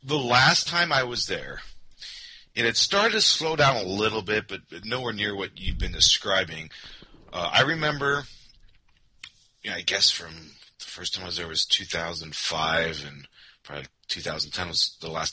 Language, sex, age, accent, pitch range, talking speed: English, male, 30-49, American, 90-120 Hz, 170 wpm